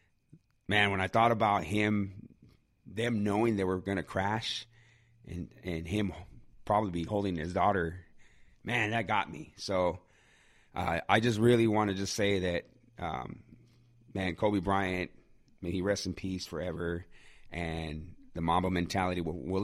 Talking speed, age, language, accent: 155 wpm, 30-49, English, American